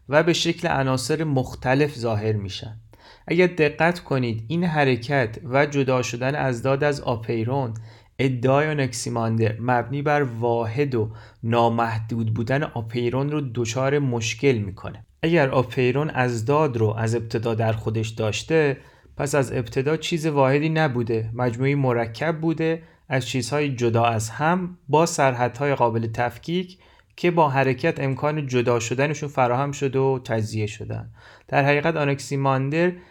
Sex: male